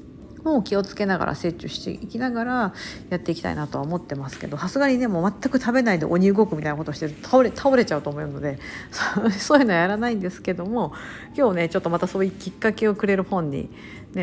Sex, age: female, 50-69